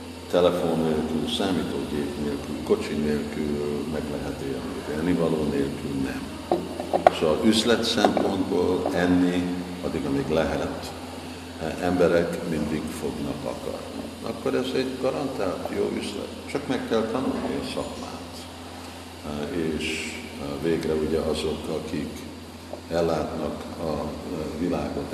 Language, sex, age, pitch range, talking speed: Hungarian, male, 60-79, 75-90 Hz, 105 wpm